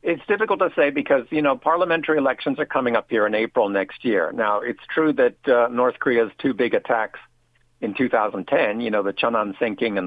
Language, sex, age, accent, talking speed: English, male, 50-69, American, 210 wpm